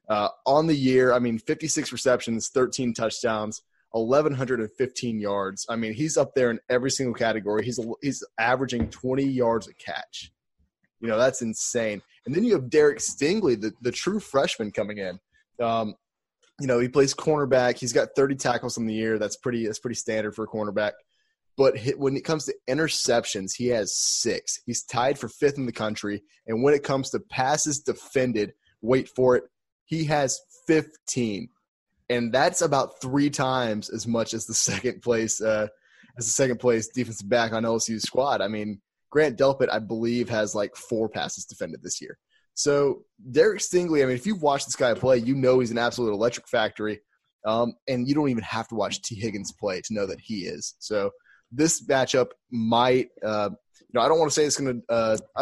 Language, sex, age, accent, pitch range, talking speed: English, male, 20-39, American, 110-135 Hz, 195 wpm